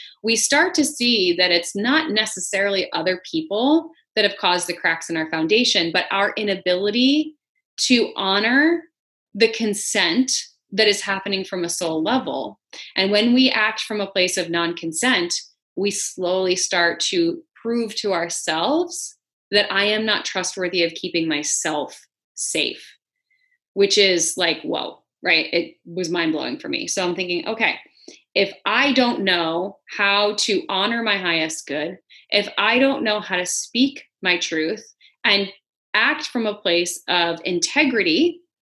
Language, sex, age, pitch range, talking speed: English, female, 30-49, 180-265 Hz, 150 wpm